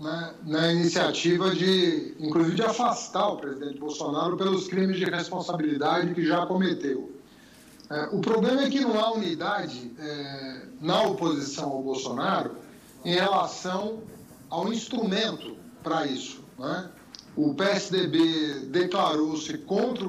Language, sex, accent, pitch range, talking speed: Portuguese, male, Brazilian, 165-215 Hz, 120 wpm